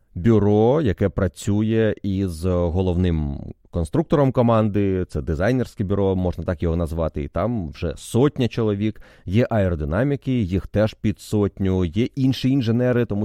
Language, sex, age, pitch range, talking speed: Ukrainian, male, 30-49, 90-110 Hz, 130 wpm